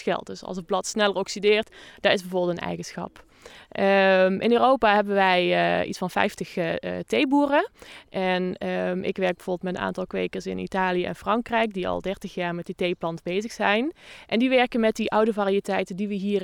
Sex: female